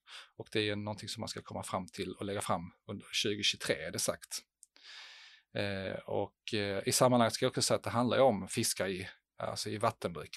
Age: 30-49